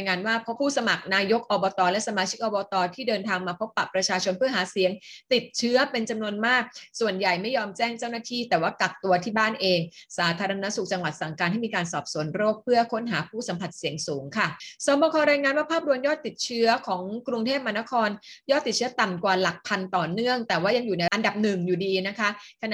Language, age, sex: Thai, 20-39, female